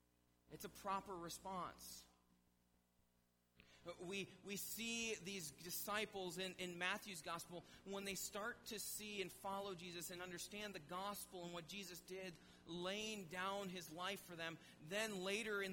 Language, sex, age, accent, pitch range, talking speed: English, male, 30-49, American, 130-205 Hz, 145 wpm